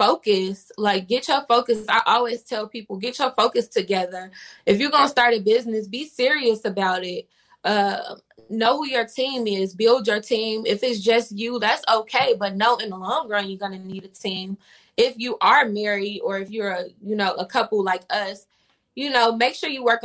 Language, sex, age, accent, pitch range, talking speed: English, female, 20-39, American, 200-240 Hz, 205 wpm